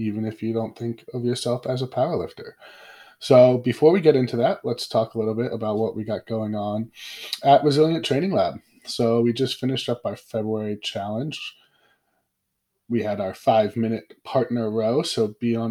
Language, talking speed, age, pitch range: English, 185 wpm, 20-39, 110-135 Hz